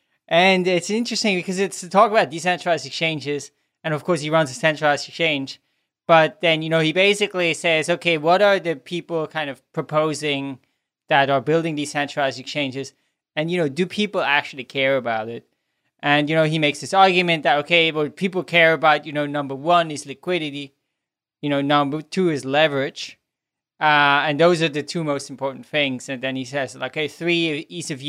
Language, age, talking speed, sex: English, 20-39, 190 wpm, male